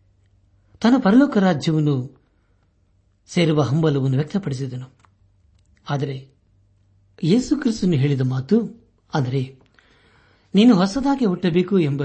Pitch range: 100-165 Hz